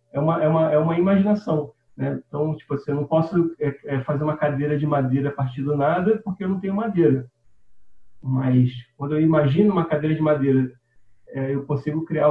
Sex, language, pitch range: male, Portuguese, 135-190 Hz